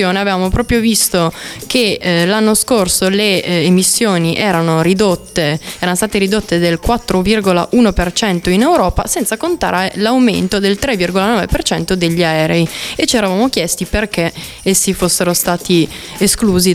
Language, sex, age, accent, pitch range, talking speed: Italian, female, 20-39, native, 175-225 Hz, 115 wpm